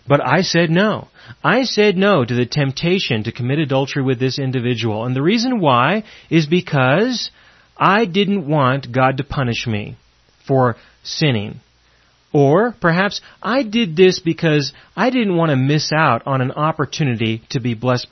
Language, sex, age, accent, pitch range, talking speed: English, male, 30-49, American, 120-165 Hz, 160 wpm